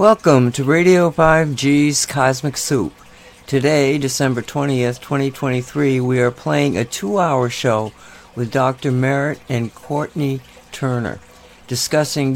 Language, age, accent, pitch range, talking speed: English, 60-79, American, 120-145 Hz, 110 wpm